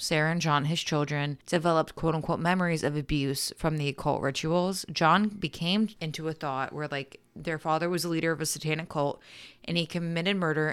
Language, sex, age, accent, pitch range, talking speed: English, female, 20-39, American, 145-170 Hz, 190 wpm